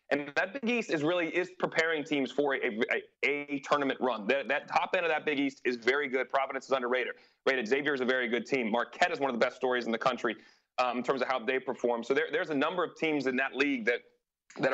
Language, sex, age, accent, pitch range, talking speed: English, male, 30-49, American, 125-150 Hz, 265 wpm